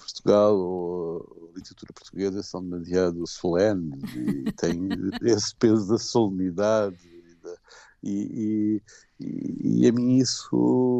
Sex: male